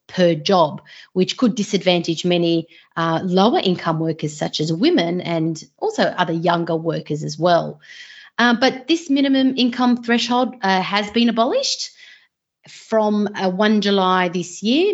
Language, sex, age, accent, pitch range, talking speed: English, female, 30-49, Australian, 160-200 Hz, 140 wpm